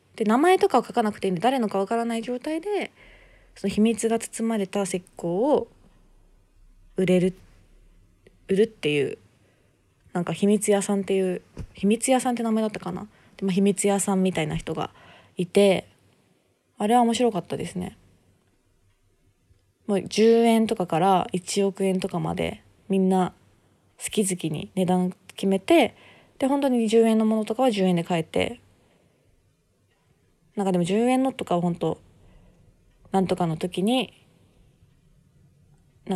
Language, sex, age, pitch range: Japanese, female, 20-39, 170-220 Hz